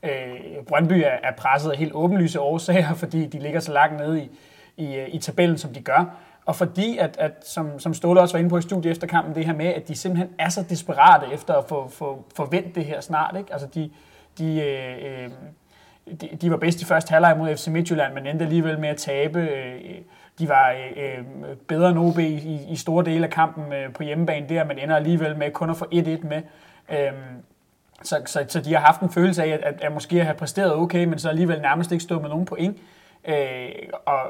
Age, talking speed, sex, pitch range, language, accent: 30-49, 210 wpm, male, 145-170 Hz, Danish, native